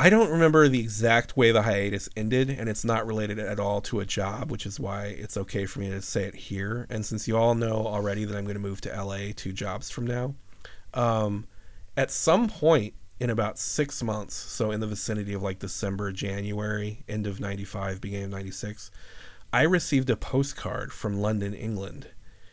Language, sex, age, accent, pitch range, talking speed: English, male, 40-59, American, 100-115 Hz, 200 wpm